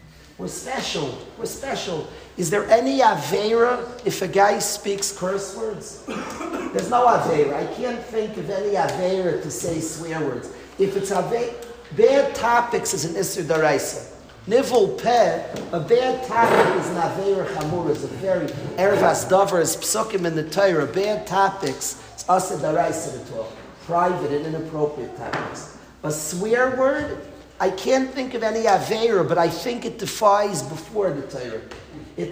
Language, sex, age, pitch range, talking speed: English, male, 50-69, 180-230 Hz, 145 wpm